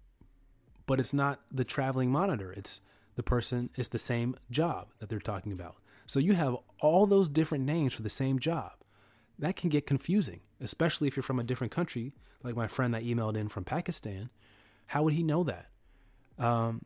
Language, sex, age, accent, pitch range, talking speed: English, male, 30-49, American, 110-140 Hz, 190 wpm